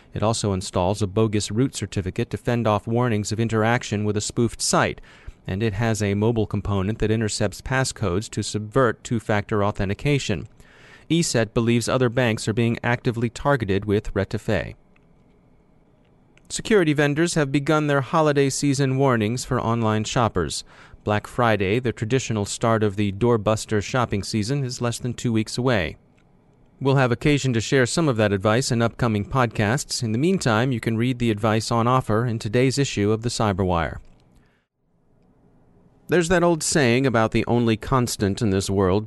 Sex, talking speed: male, 165 wpm